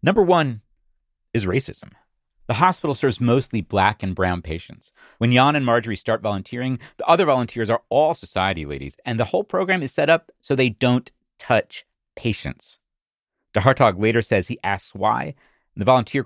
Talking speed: 170 wpm